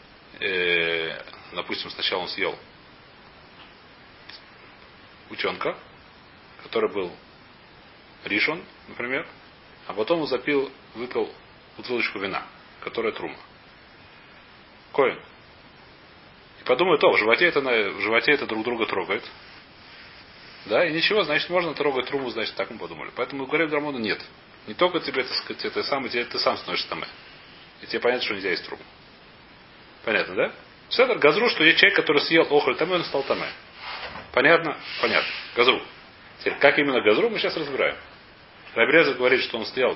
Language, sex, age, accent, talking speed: Russian, male, 30-49, native, 145 wpm